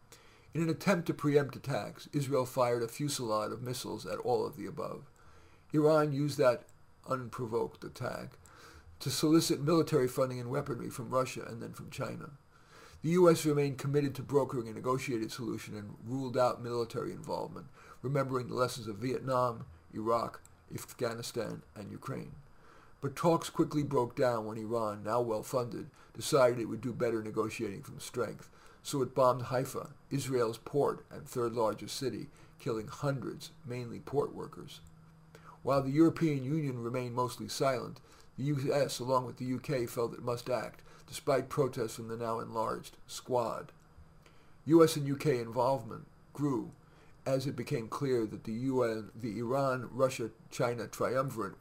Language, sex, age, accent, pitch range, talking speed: English, male, 50-69, American, 115-145 Hz, 145 wpm